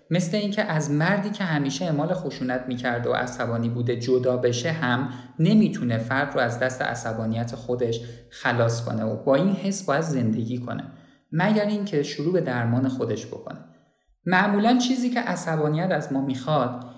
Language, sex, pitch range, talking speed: Persian, male, 125-180 Hz, 160 wpm